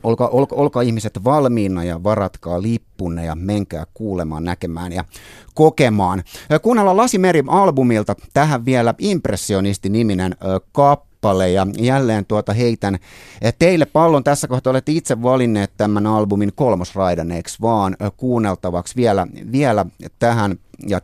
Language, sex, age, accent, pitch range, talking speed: Finnish, male, 30-49, native, 95-120 Hz, 120 wpm